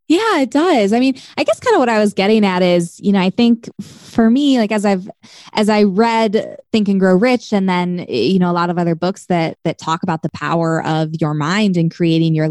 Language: English